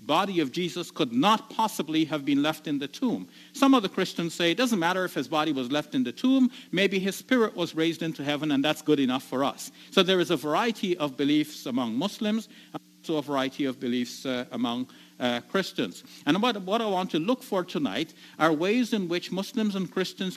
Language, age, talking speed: English, 50-69, 220 wpm